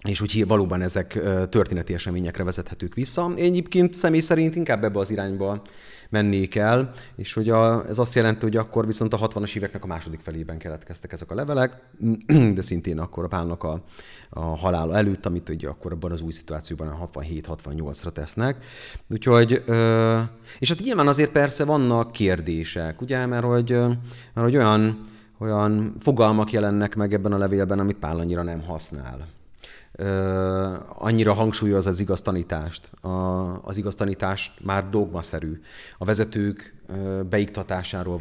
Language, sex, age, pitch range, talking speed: Hungarian, male, 30-49, 90-110 Hz, 150 wpm